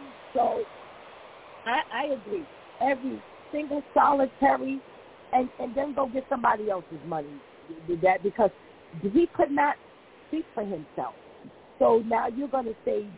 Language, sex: English, female